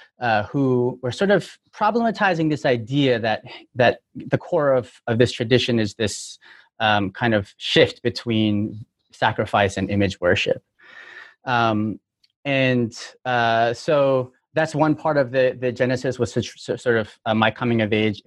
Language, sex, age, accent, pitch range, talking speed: English, male, 30-49, American, 110-135 Hz, 150 wpm